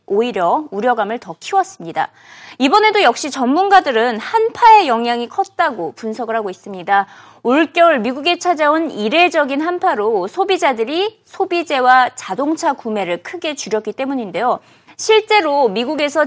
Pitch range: 230-350 Hz